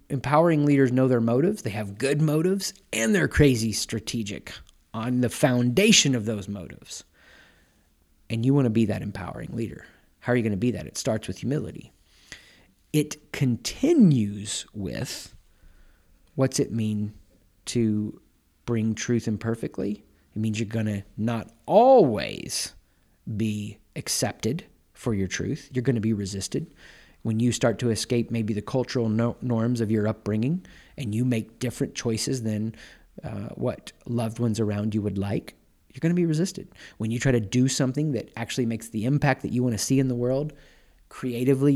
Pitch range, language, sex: 105-130 Hz, English, male